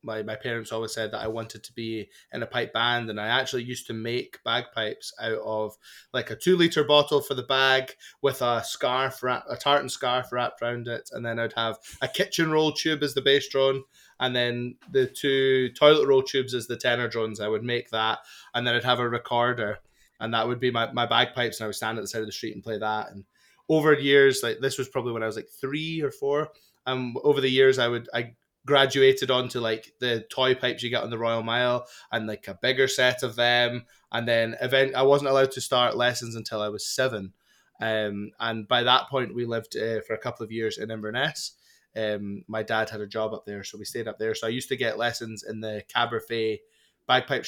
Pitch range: 110-130 Hz